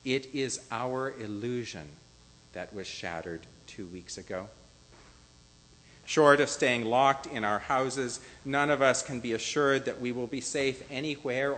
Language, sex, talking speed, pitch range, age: English, male, 150 wpm, 85-125 Hz, 50-69